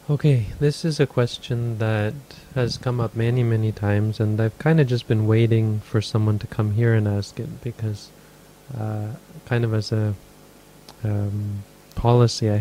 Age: 20-39